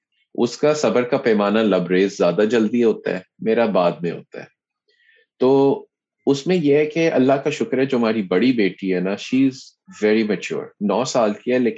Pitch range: 95-135 Hz